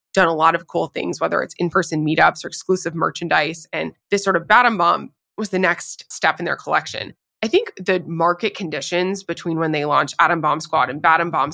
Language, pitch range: English, 155-185 Hz